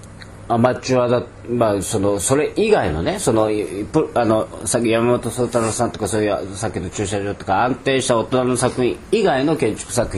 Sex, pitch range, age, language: male, 90-125 Hz, 40-59, Japanese